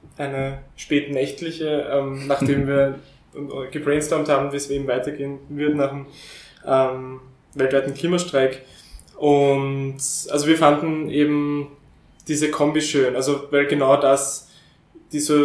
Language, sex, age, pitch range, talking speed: German, male, 20-39, 140-155 Hz, 115 wpm